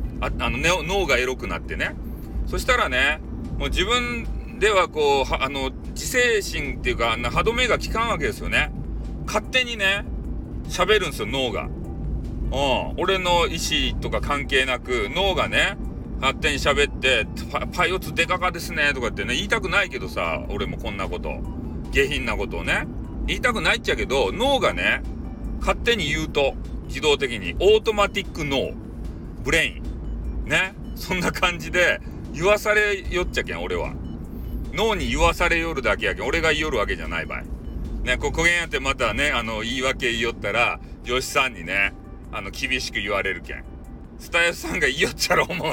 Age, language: 40-59, Japanese